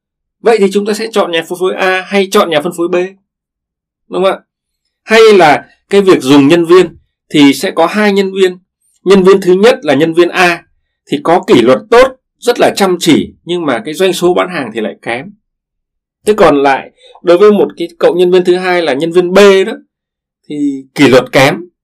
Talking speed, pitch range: 220 wpm, 150-210 Hz